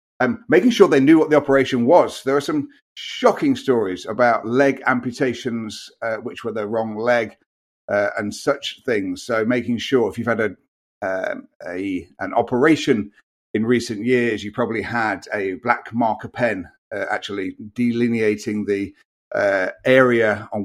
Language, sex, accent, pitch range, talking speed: English, male, British, 110-140 Hz, 155 wpm